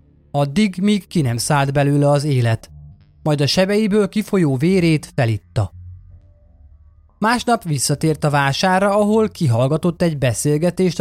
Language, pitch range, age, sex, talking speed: Hungarian, 115-180 Hz, 20-39, male, 120 wpm